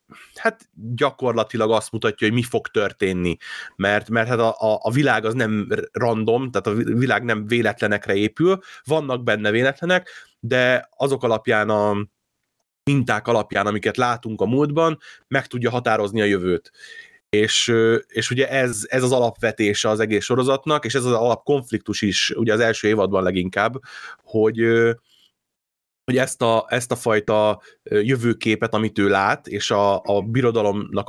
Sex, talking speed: male, 145 wpm